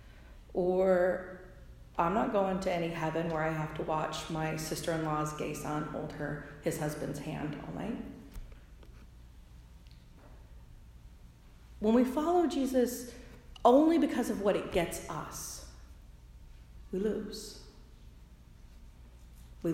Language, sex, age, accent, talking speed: English, female, 40-59, American, 115 wpm